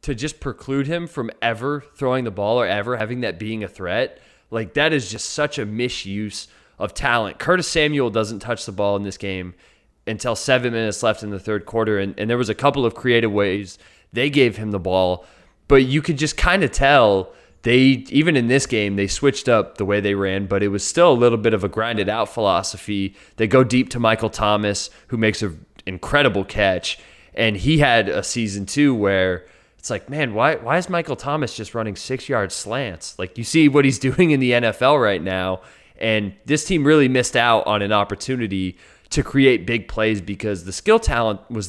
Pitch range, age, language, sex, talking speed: 100-130 Hz, 20-39, English, male, 210 wpm